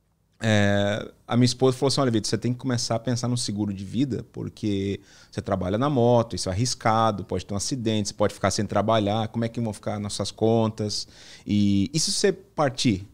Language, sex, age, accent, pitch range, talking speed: Portuguese, male, 20-39, Brazilian, 105-135 Hz, 215 wpm